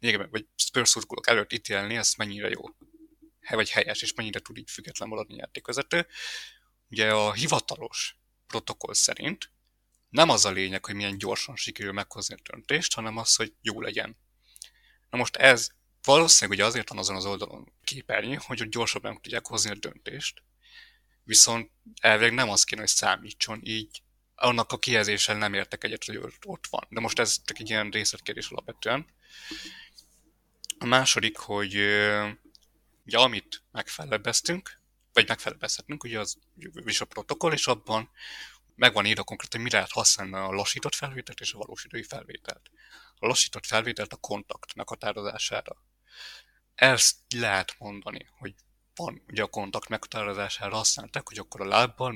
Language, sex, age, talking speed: English, male, 30-49, 150 wpm